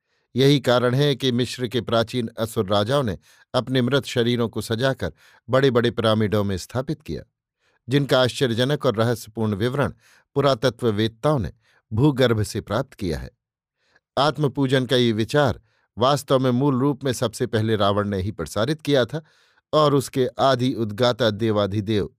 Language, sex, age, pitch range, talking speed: Hindi, male, 50-69, 110-140 Hz, 150 wpm